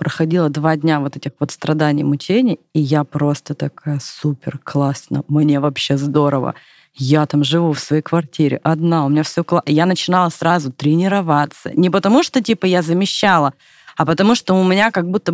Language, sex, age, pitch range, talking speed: Russian, female, 30-49, 150-180 Hz, 180 wpm